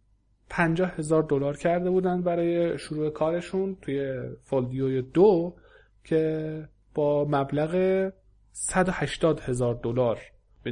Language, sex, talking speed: Persian, male, 90 wpm